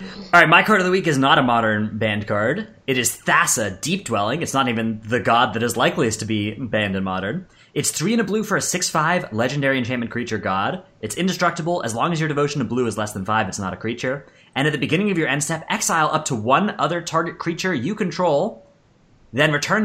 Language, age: English, 30-49